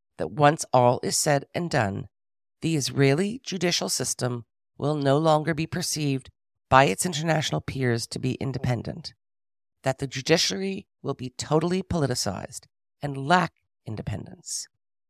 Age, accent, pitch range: 50-69, American, 120-160 Hz